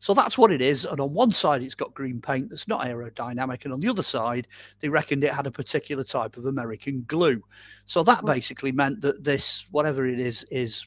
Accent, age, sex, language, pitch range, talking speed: British, 40-59, male, English, 120-170 Hz, 225 wpm